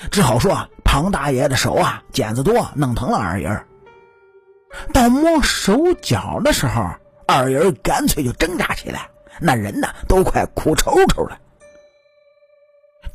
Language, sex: Chinese, male